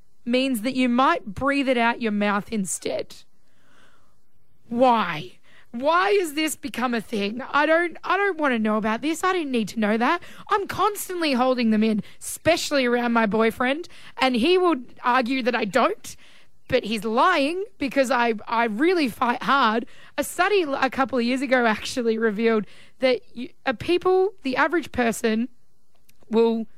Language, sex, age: English, female, 20-39